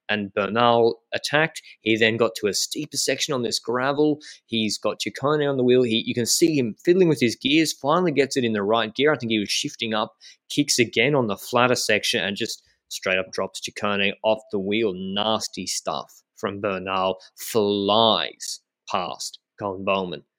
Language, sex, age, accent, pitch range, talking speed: English, male, 20-39, Australian, 100-130 Hz, 185 wpm